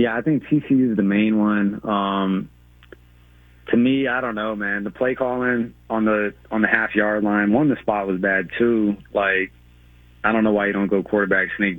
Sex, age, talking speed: male, 30-49, 205 wpm